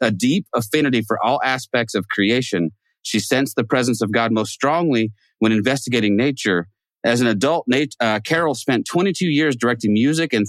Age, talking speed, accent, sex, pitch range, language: 40-59, 170 wpm, American, male, 105-130 Hz, English